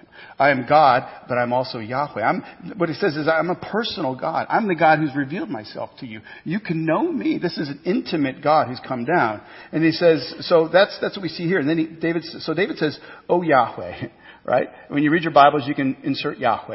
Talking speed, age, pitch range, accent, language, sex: 235 wpm, 50-69, 135-165 Hz, American, English, male